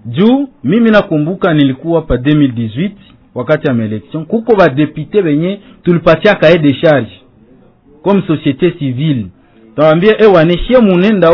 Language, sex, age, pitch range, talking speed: French, male, 50-69, 135-205 Hz, 130 wpm